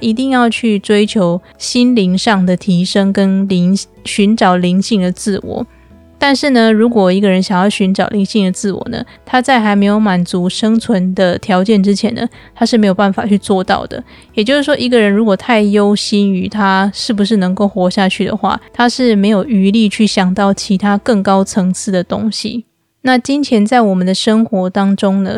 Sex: female